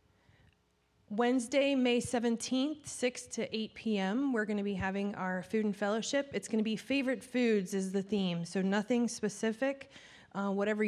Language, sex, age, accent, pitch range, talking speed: English, female, 30-49, American, 190-235 Hz, 155 wpm